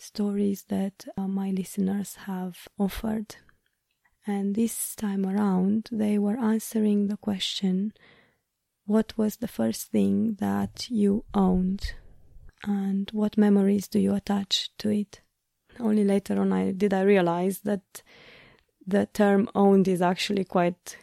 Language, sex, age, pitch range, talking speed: English, female, 20-39, 195-215 Hz, 130 wpm